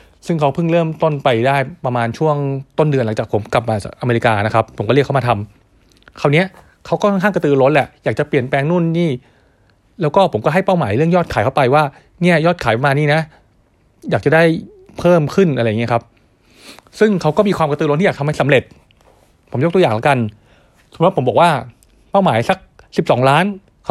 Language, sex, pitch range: Thai, male, 120-170 Hz